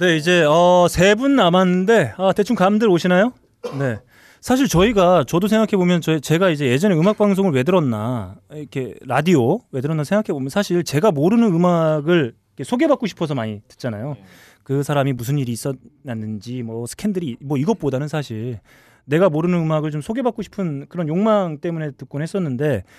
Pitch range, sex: 135-185 Hz, male